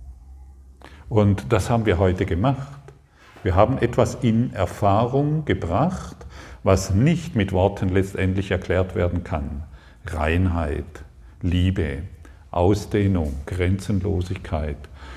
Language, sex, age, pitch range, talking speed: German, male, 50-69, 90-110 Hz, 95 wpm